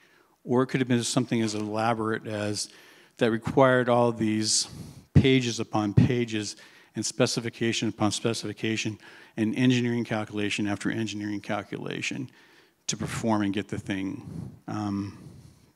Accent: American